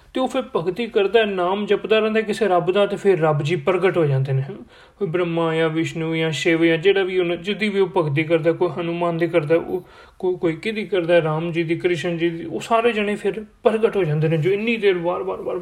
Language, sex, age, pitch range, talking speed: Punjabi, male, 30-49, 165-195 Hz, 250 wpm